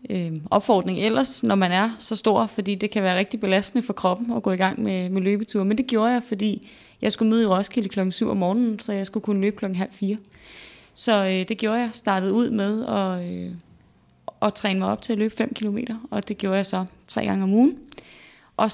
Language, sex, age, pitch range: Danish, female, 30-49, 190-220 Hz